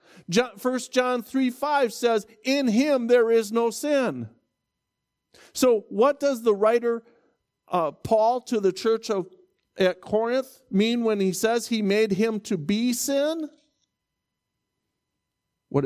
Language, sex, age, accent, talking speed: English, male, 50-69, American, 130 wpm